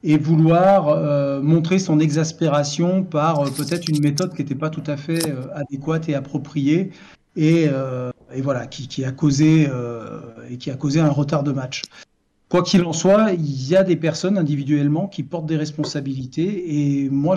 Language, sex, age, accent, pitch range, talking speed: French, male, 40-59, French, 145-170 Hz, 185 wpm